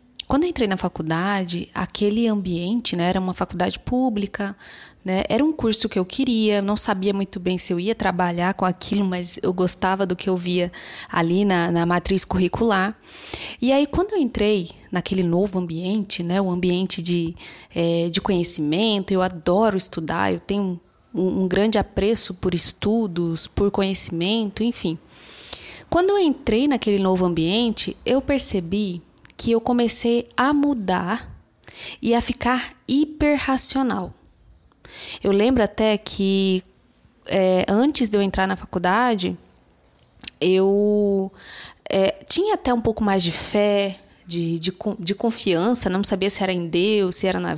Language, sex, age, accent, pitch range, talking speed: Portuguese, female, 20-39, Brazilian, 180-230 Hz, 145 wpm